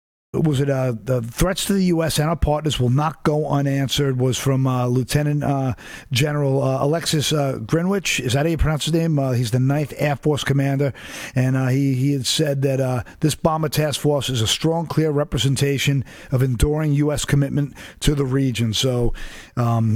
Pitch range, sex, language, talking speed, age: 130-155 Hz, male, English, 200 wpm, 50-69